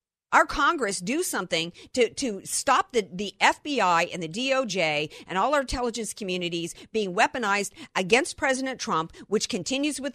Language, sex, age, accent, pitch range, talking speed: English, female, 50-69, American, 180-250 Hz, 155 wpm